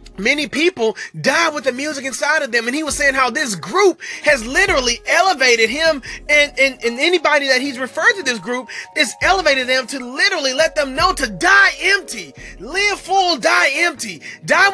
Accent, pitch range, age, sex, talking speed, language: American, 225-340 Hz, 30-49, male, 185 wpm, English